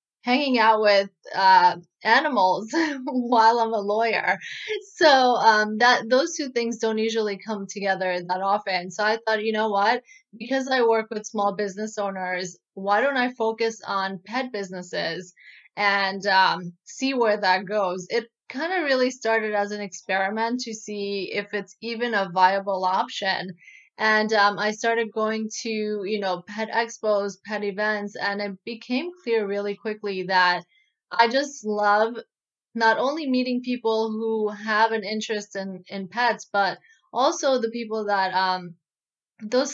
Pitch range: 195-230 Hz